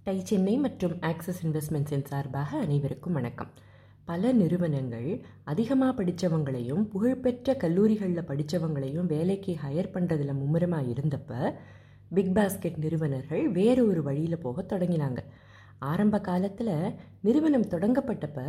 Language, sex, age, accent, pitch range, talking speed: Tamil, female, 20-39, native, 150-210 Hz, 95 wpm